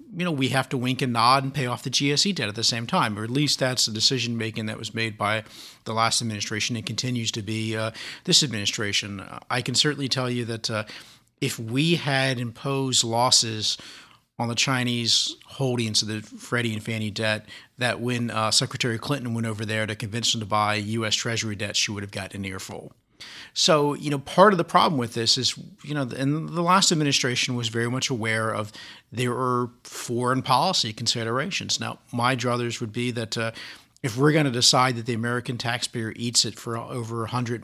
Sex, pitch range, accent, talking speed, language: male, 110-130 Hz, American, 205 wpm, English